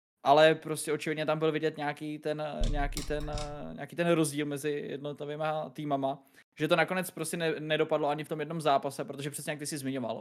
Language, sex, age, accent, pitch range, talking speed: Czech, male, 20-39, native, 140-160 Hz, 190 wpm